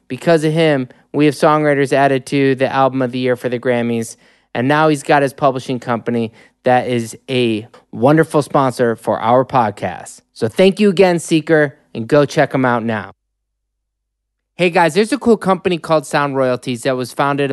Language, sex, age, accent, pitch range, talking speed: English, male, 20-39, American, 130-185 Hz, 185 wpm